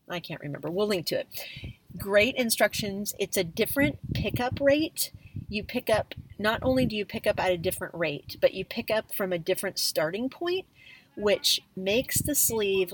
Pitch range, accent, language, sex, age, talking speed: 175-225 Hz, American, English, female, 40-59, 185 wpm